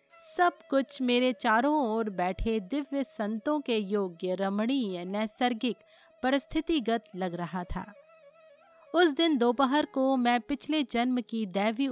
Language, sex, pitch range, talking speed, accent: Hindi, female, 215-295 Hz, 120 wpm, native